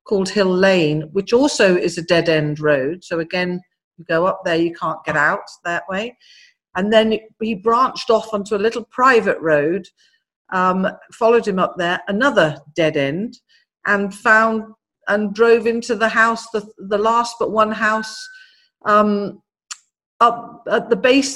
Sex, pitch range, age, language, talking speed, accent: female, 170-220 Hz, 50-69, English, 165 wpm, British